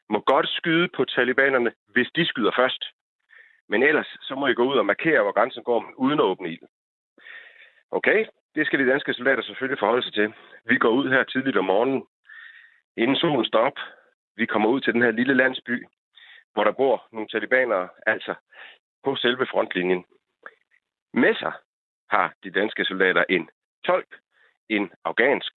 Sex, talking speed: male, 170 wpm